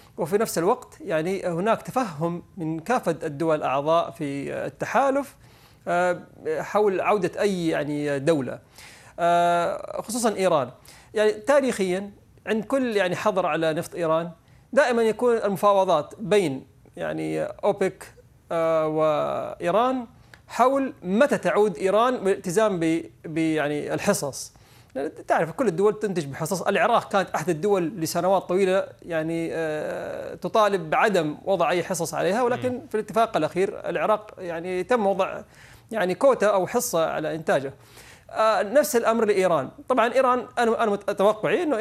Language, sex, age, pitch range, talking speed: Arabic, male, 30-49, 160-220 Hz, 120 wpm